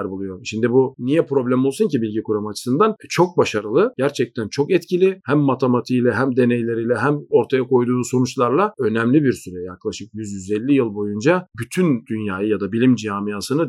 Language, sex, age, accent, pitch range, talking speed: Turkish, male, 40-59, native, 120-155 Hz, 160 wpm